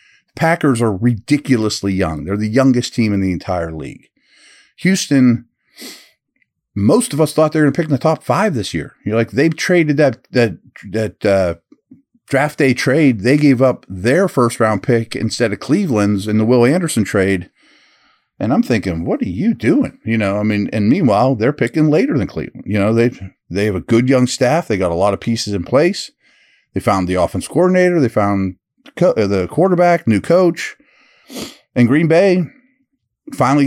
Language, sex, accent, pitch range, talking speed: English, male, American, 110-160 Hz, 185 wpm